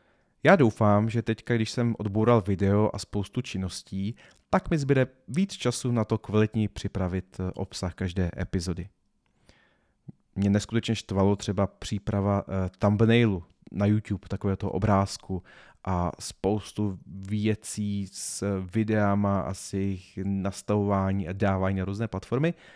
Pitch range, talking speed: 95-115 Hz, 125 wpm